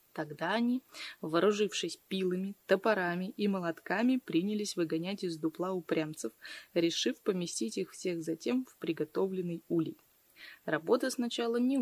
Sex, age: female, 20-39